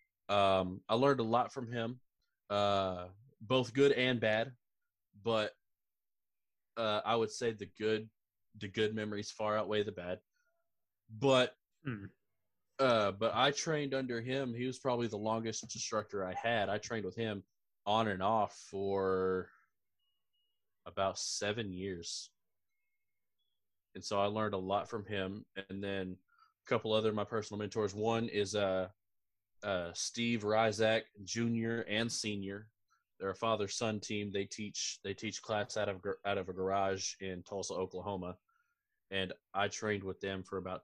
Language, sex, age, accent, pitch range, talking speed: English, male, 20-39, American, 100-115 Hz, 150 wpm